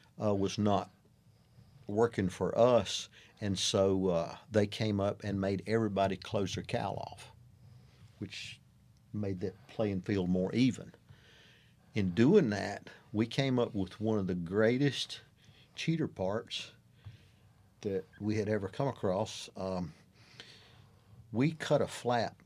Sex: male